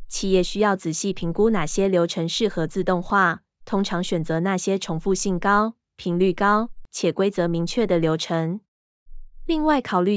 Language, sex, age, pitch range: Chinese, female, 20-39, 175-210 Hz